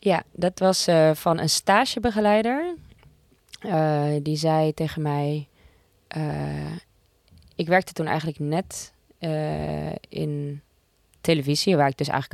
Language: Dutch